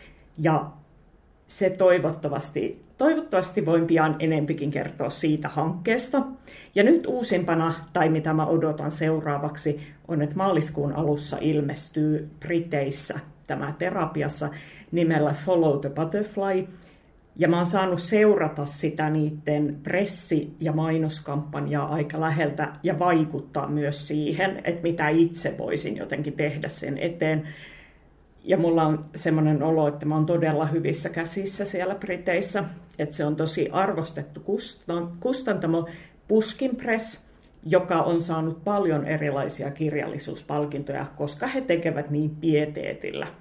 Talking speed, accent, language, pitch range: 120 wpm, native, Finnish, 150-180 Hz